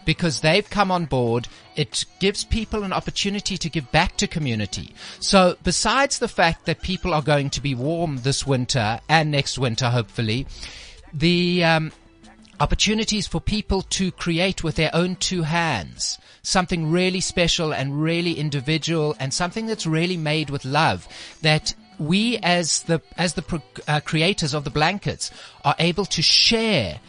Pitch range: 135-180 Hz